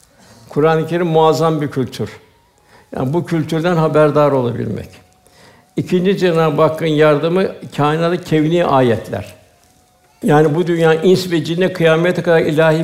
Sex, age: male, 60-79